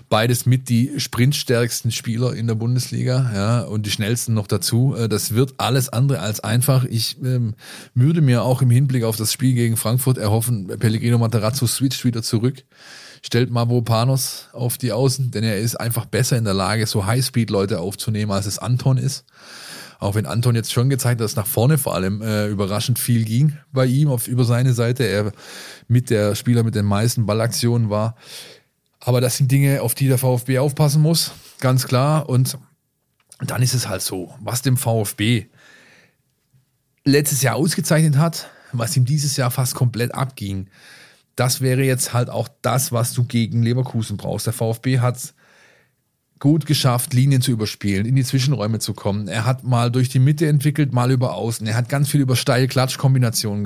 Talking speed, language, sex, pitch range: 180 wpm, German, male, 115-135 Hz